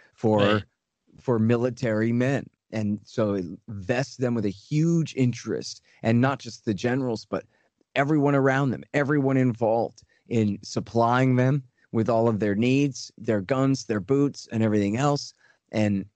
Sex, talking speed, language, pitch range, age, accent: male, 150 wpm, English, 110-140 Hz, 40-59, American